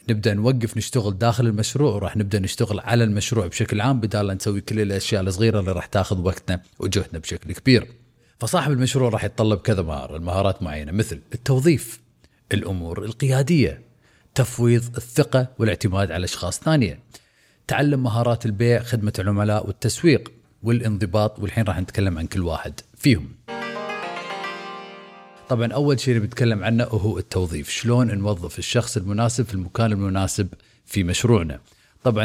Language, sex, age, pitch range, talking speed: Arabic, male, 30-49, 95-120 Hz, 135 wpm